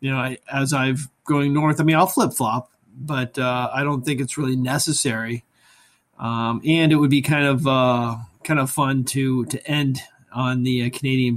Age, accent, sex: 30-49, American, male